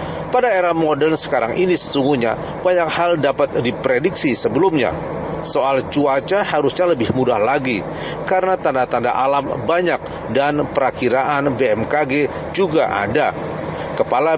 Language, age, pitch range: Indonesian, 40-59, 140-170 Hz